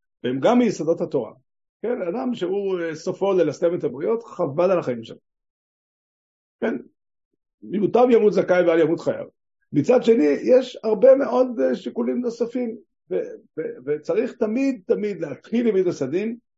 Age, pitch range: 50-69, 140-215 Hz